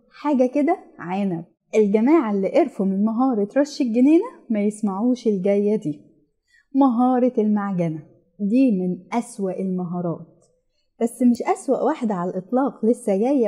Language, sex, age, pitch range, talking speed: Arabic, female, 10-29, 195-270 Hz, 125 wpm